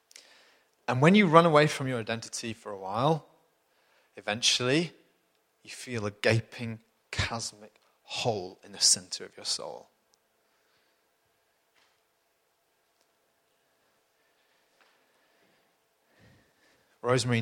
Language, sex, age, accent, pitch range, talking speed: English, male, 30-49, British, 110-140 Hz, 85 wpm